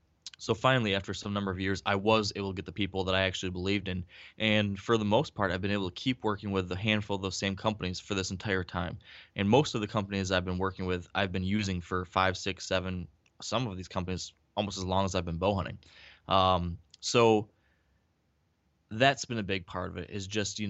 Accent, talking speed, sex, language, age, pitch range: American, 235 wpm, male, English, 20-39, 90-105 Hz